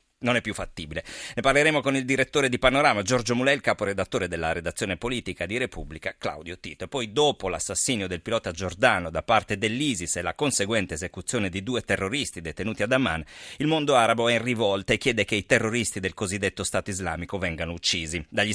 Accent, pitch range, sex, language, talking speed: native, 90-125 Hz, male, Italian, 190 wpm